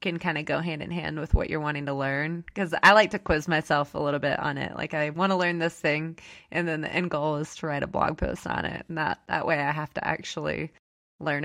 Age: 20-39